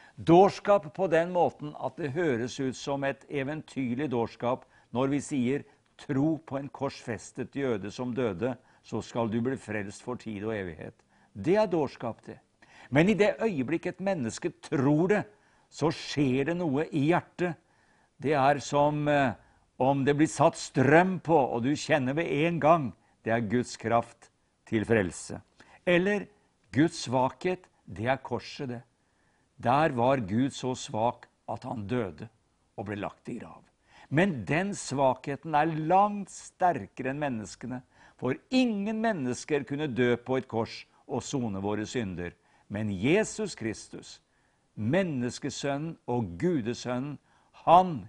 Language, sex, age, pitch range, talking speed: English, male, 60-79, 115-150 Hz, 150 wpm